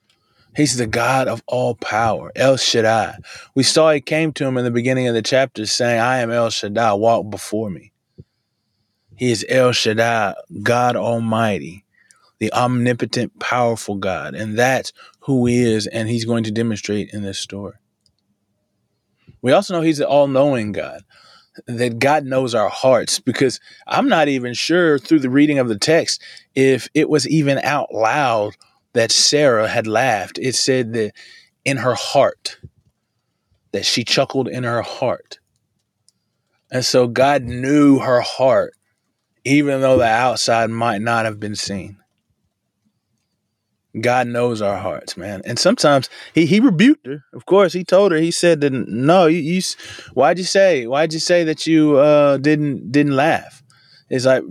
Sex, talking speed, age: male, 160 wpm, 20-39